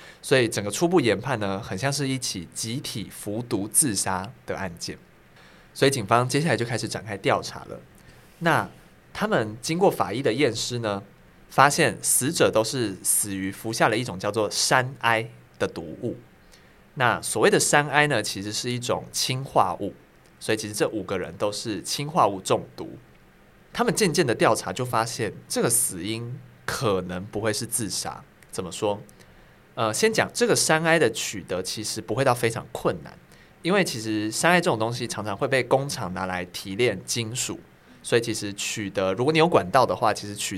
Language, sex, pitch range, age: Chinese, male, 105-135 Hz, 20-39